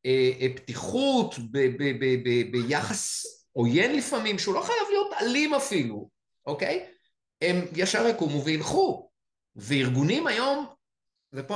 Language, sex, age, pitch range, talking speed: Hebrew, male, 50-69, 125-180 Hz, 120 wpm